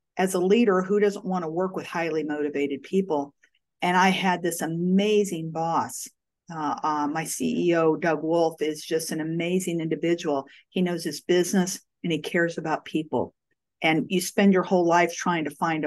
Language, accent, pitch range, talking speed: English, American, 160-190 Hz, 175 wpm